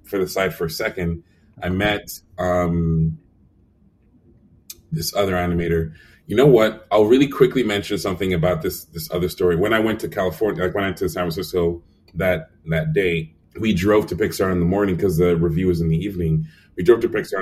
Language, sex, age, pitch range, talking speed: English, male, 30-49, 85-105 Hz, 195 wpm